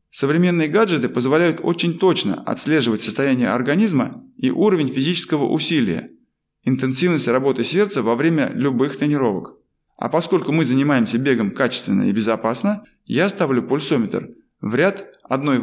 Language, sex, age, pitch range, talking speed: Russian, male, 20-39, 130-180 Hz, 125 wpm